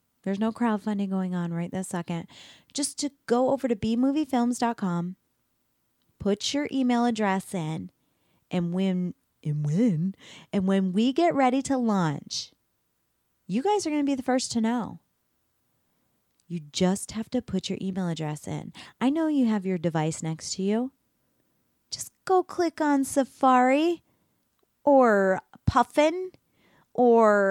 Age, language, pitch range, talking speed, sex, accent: 20-39, English, 190-275 Hz, 135 wpm, female, American